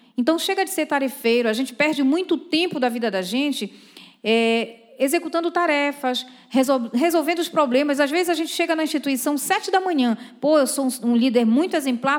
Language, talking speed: Portuguese, 190 wpm